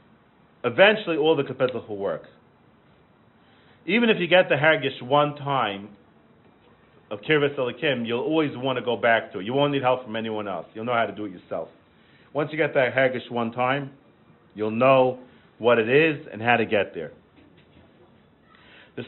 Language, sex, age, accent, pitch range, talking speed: English, male, 40-59, American, 120-145 Hz, 175 wpm